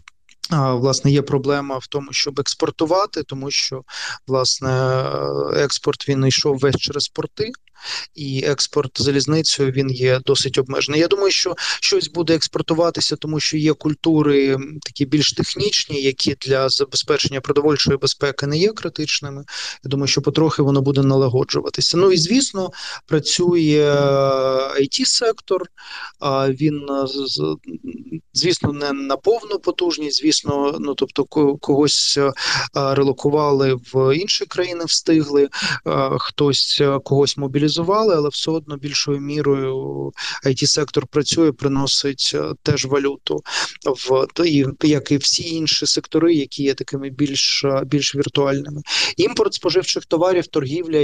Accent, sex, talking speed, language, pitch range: native, male, 120 wpm, Ukrainian, 135-150 Hz